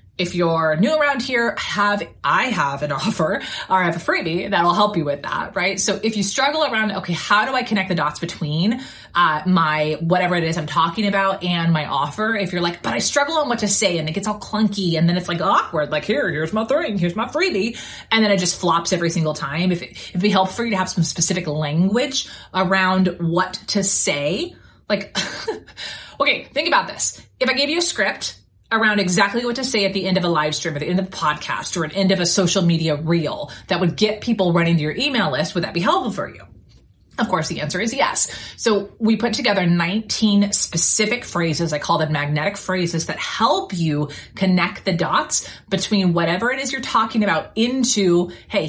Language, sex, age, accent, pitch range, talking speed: English, female, 30-49, American, 165-210 Hz, 225 wpm